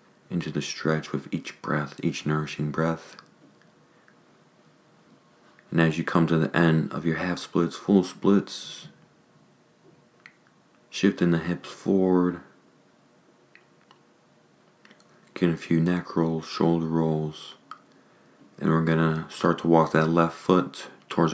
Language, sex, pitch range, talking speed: English, male, 80-85 Hz, 120 wpm